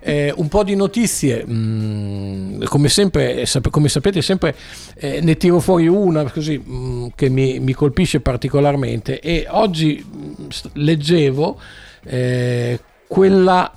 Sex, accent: male, native